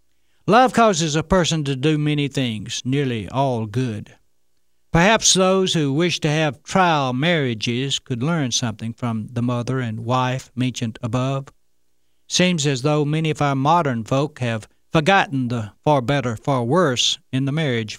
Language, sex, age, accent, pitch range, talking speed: English, male, 60-79, American, 110-170 Hz, 155 wpm